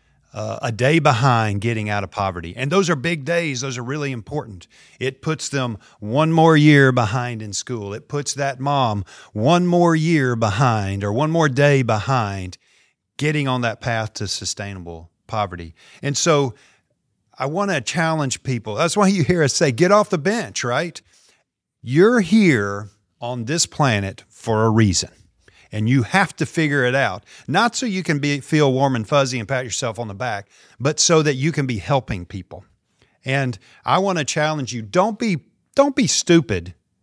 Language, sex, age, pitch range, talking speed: English, male, 40-59, 110-155 Hz, 185 wpm